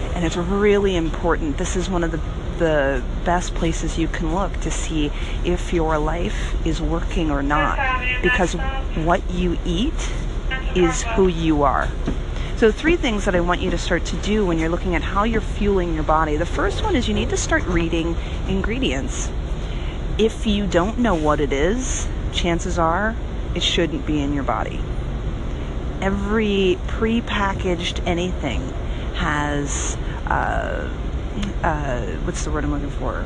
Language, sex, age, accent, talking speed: English, female, 30-49, American, 160 wpm